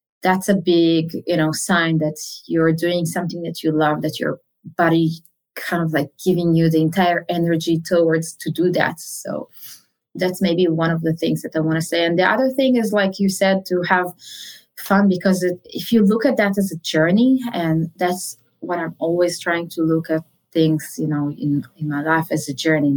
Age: 20-39